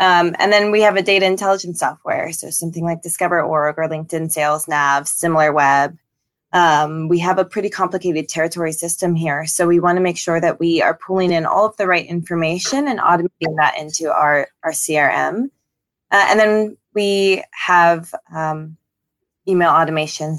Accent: American